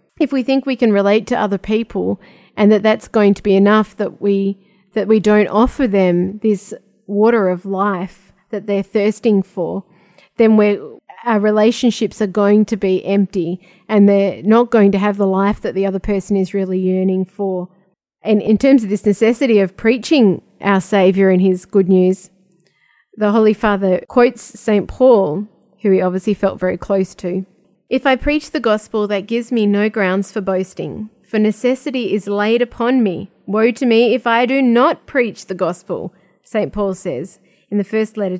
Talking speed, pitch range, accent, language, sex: 185 wpm, 195-225 Hz, Australian, English, female